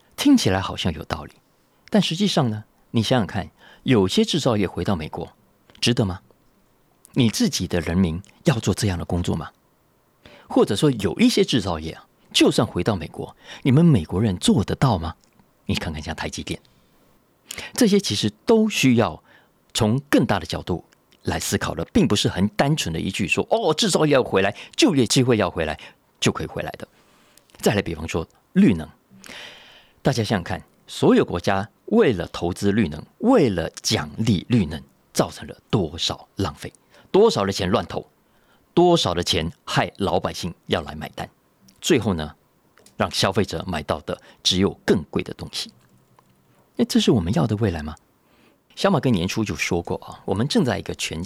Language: Chinese